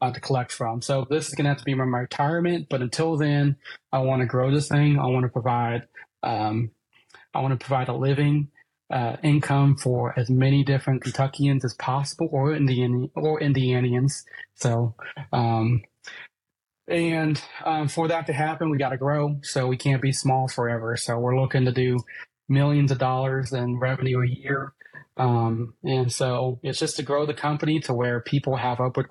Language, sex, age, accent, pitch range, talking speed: English, male, 30-49, American, 125-140 Hz, 185 wpm